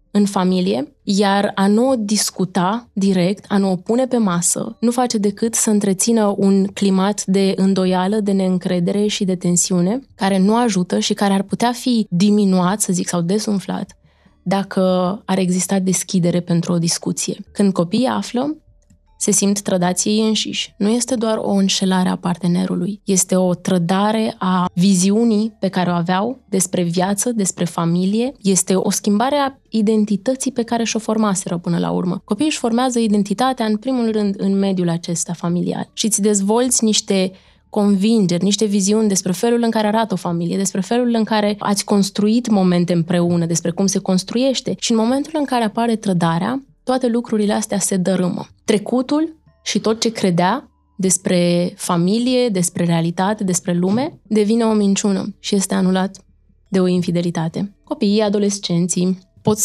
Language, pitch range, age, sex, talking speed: Romanian, 185-220 Hz, 20-39, female, 160 wpm